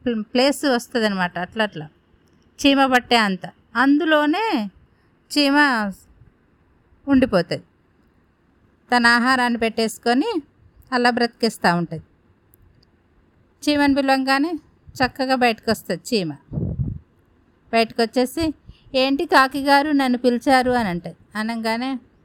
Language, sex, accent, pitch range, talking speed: Telugu, female, native, 215-265 Hz, 90 wpm